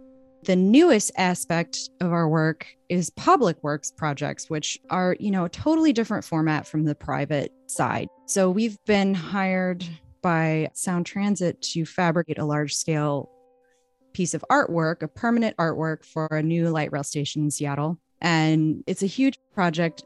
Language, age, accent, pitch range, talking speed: English, 20-39, American, 155-205 Hz, 160 wpm